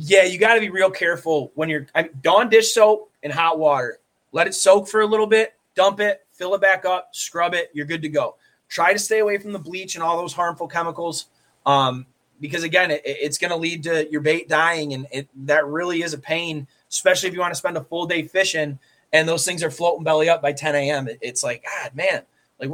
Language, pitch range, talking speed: English, 150-190 Hz, 230 wpm